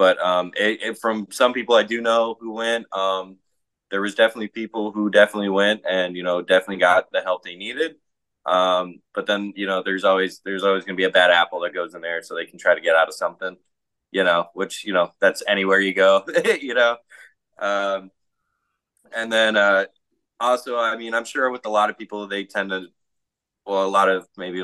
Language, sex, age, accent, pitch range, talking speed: English, male, 20-39, American, 90-115 Hz, 220 wpm